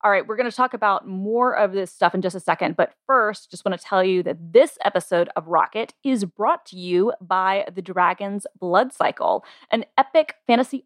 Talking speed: 215 wpm